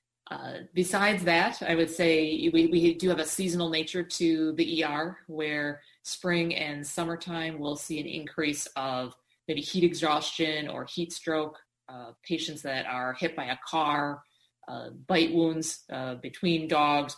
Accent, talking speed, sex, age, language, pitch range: American, 155 wpm, female, 30-49, English, 140-170 Hz